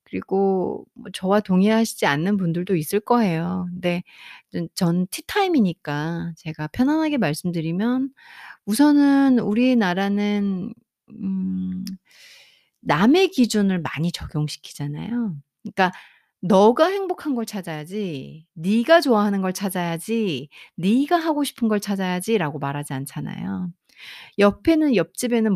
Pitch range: 165-245 Hz